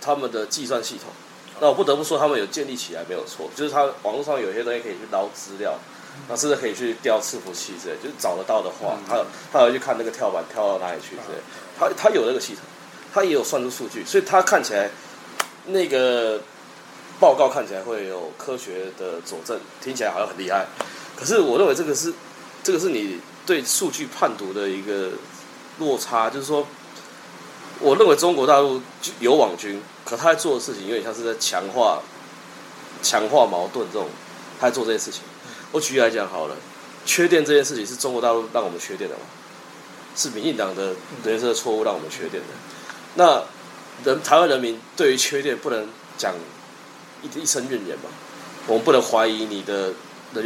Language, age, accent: Japanese, 20-39, Chinese